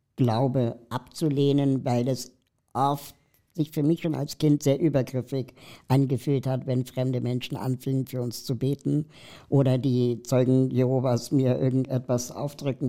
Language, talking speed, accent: German, 140 wpm, German